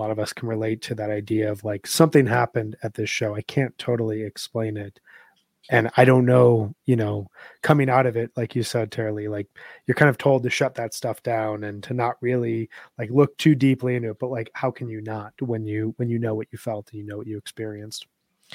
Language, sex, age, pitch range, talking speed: English, male, 20-39, 115-130 Hz, 245 wpm